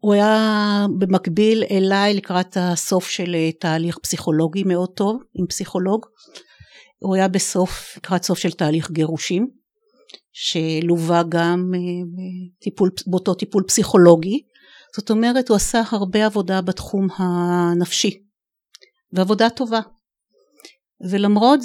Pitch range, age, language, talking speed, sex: 170-215 Hz, 50-69, Hebrew, 105 wpm, female